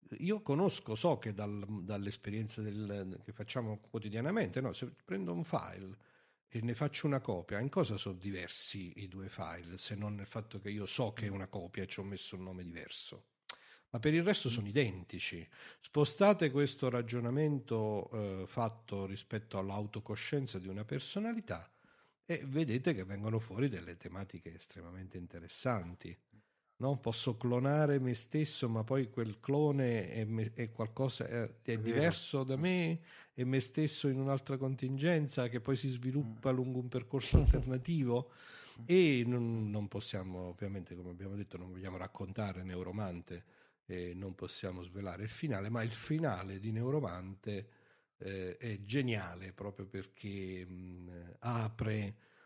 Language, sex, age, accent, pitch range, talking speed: Italian, male, 50-69, native, 95-130 Hz, 150 wpm